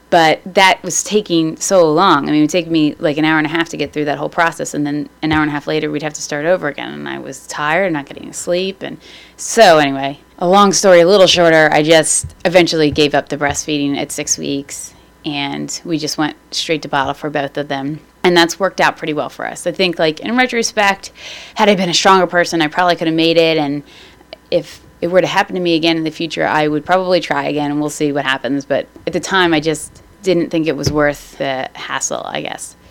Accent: American